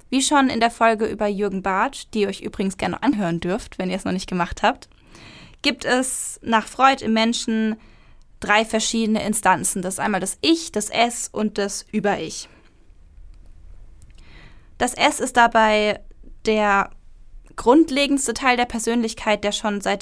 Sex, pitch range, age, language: female, 200-235 Hz, 10-29, German